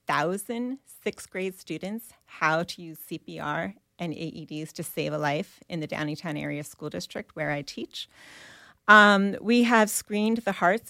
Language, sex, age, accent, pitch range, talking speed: English, female, 30-49, American, 155-205 Hz, 160 wpm